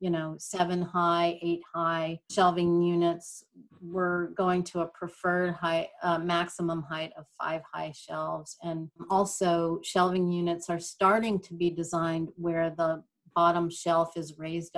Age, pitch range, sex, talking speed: 40-59, 165-185 Hz, female, 145 wpm